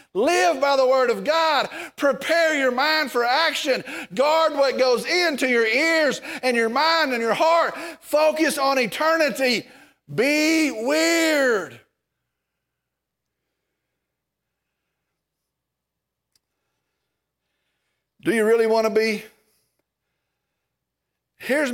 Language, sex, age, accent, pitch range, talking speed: English, male, 50-69, American, 170-260 Hz, 95 wpm